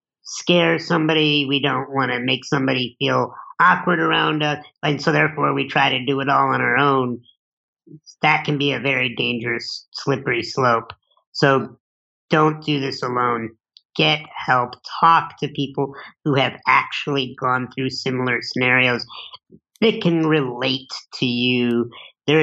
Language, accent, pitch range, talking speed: English, American, 125-150 Hz, 145 wpm